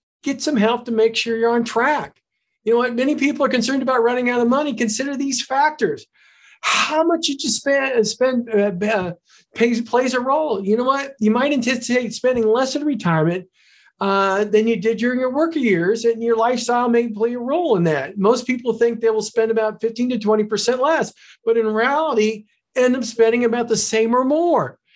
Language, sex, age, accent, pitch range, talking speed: English, male, 50-69, American, 225-275 Hz, 200 wpm